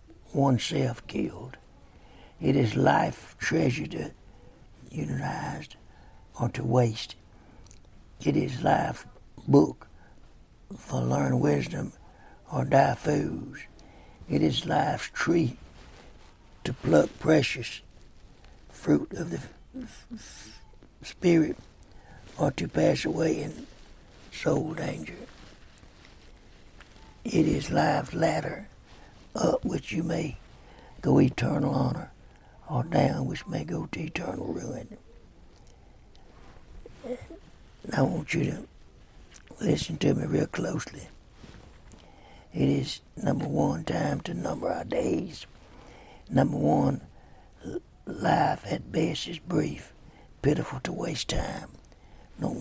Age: 60-79